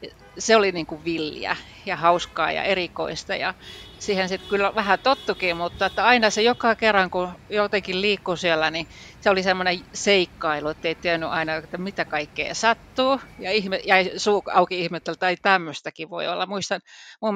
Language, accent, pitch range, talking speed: Finnish, native, 160-200 Hz, 170 wpm